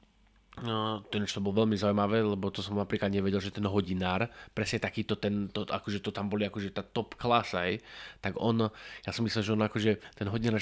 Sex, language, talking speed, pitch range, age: male, English, 220 wpm, 100-115 Hz, 20-39